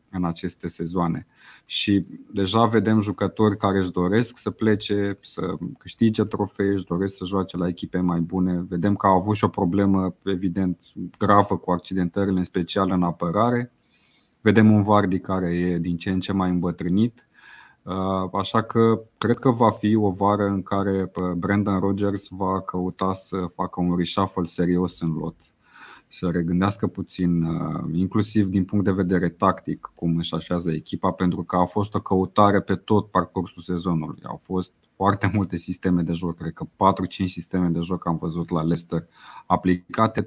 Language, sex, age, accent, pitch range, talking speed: Romanian, male, 30-49, native, 90-110 Hz, 165 wpm